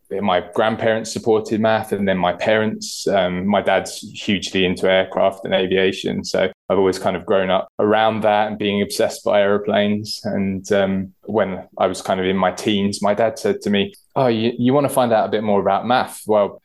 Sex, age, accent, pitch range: male, 20-39, British, 95-110 Hz